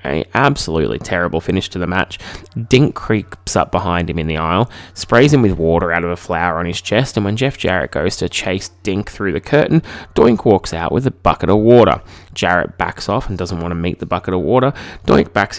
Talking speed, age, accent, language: 225 wpm, 20-39, Australian, English